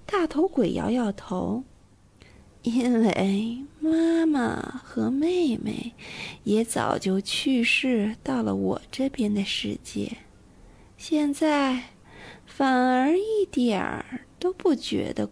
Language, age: Chinese, 30-49